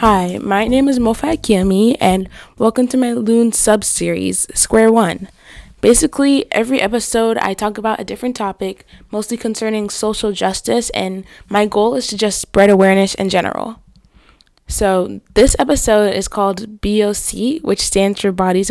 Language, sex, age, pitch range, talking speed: English, female, 10-29, 190-225 Hz, 150 wpm